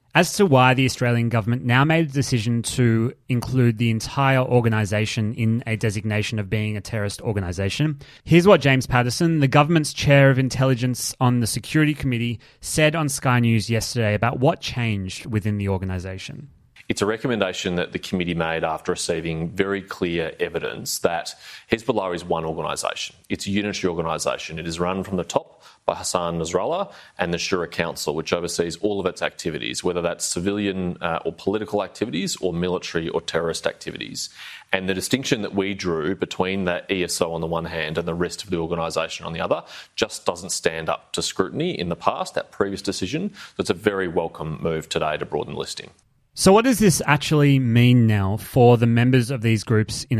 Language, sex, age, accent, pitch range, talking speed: English, male, 30-49, Australian, 100-130 Hz, 185 wpm